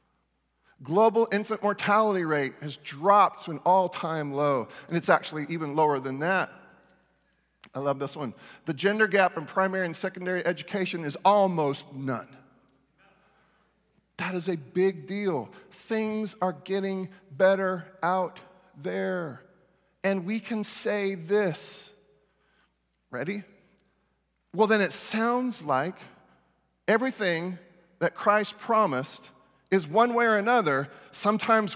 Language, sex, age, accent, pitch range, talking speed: English, male, 40-59, American, 150-205 Hz, 120 wpm